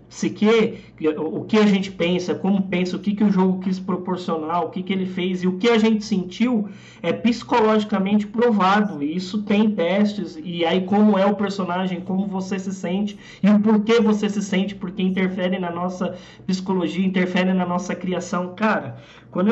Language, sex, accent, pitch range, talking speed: Portuguese, male, Brazilian, 165-205 Hz, 190 wpm